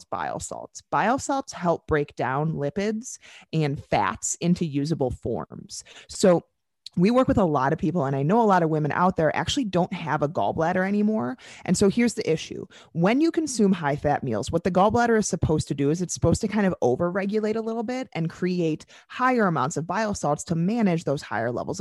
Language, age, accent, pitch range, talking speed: English, 30-49, American, 140-195 Hz, 210 wpm